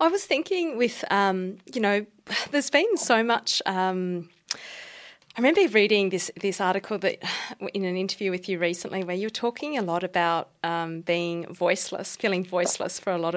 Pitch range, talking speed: 180-220 Hz, 175 wpm